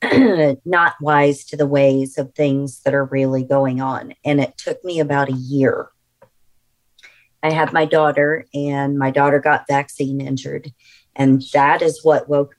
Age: 40-59